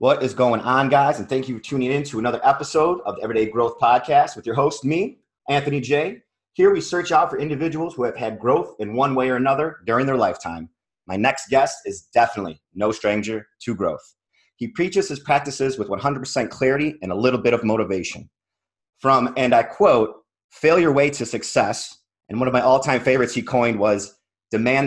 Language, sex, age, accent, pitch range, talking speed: English, male, 30-49, American, 110-135 Hz, 200 wpm